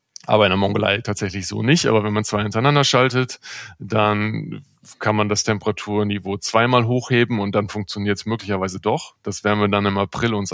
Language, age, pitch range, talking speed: German, 20-39, 100-115 Hz, 190 wpm